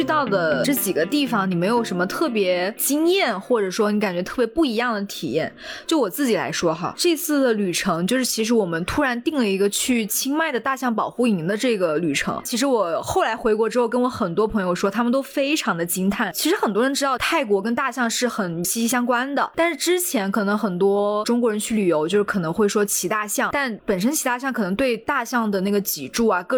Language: Chinese